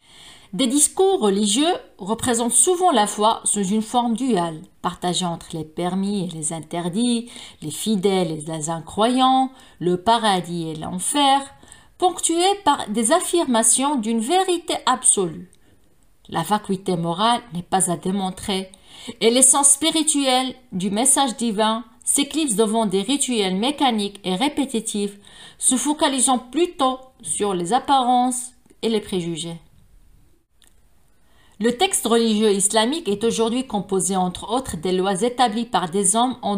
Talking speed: 130 wpm